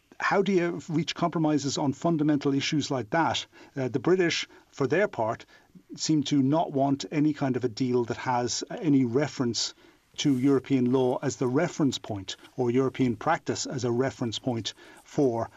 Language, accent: English, British